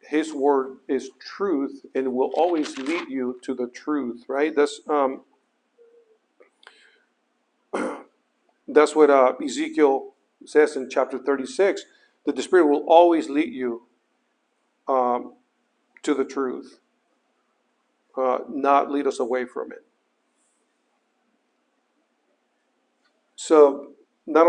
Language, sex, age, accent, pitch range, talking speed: English, male, 50-69, American, 130-155 Hz, 105 wpm